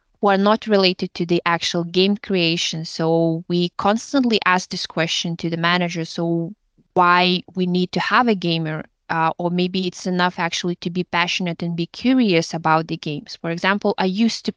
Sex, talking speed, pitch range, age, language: female, 190 wpm, 170-200 Hz, 20-39, English